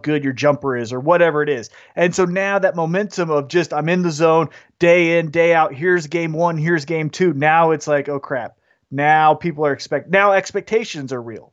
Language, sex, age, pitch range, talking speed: English, male, 30-49, 140-175 Hz, 220 wpm